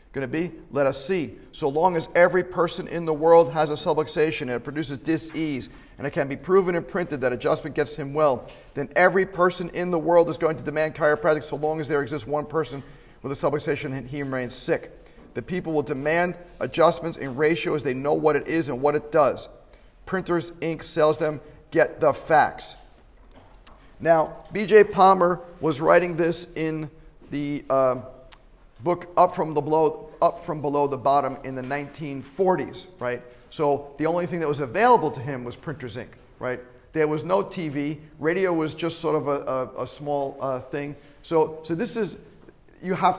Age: 40-59